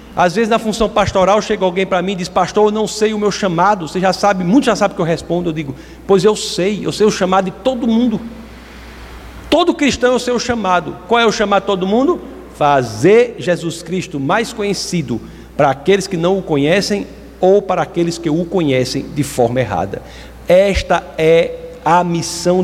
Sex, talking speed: male, 200 wpm